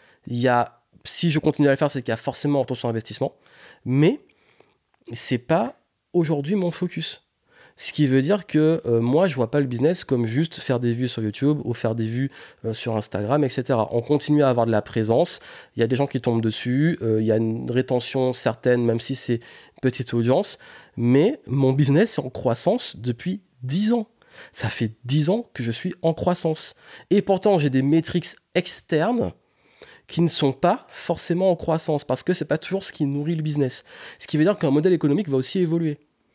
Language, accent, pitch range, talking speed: French, French, 125-165 Hz, 220 wpm